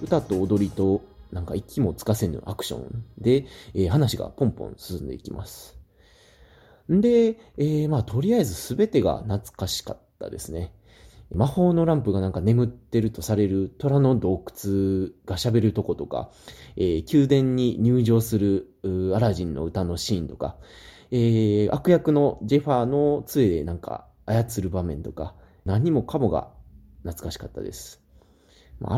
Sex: male